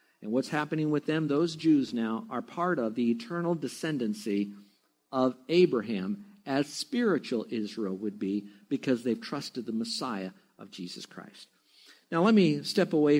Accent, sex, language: American, male, English